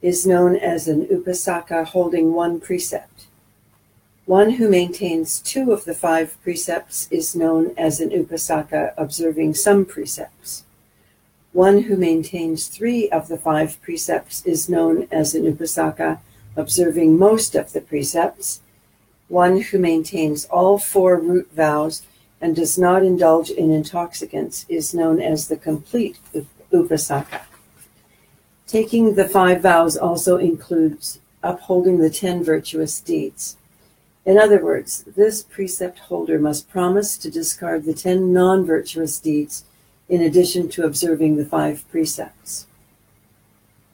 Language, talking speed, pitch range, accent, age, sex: English, 125 wpm, 160-185 Hz, American, 60-79, female